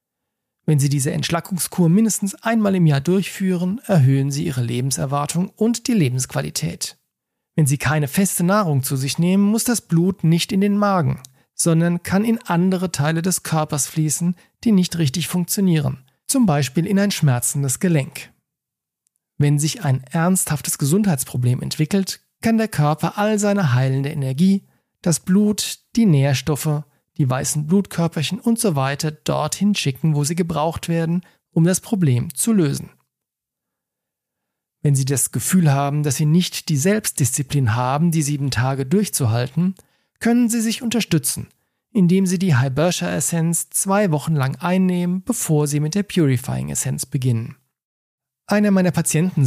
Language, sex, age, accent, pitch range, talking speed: German, male, 40-59, German, 140-190 Hz, 145 wpm